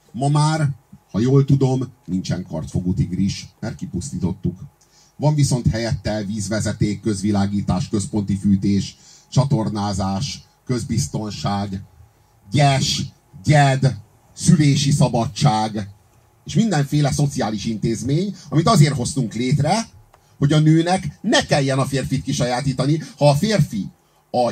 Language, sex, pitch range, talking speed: Hungarian, male, 105-155 Hz, 105 wpm